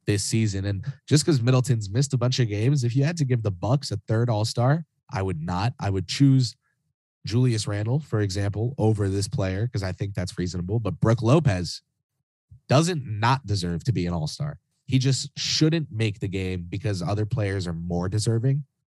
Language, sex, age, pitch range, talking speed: English, male, 20-39, 105-135 Hz, 195 wpm